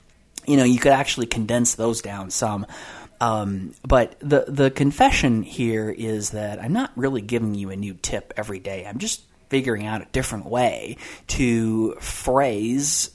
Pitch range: 105-125 Hz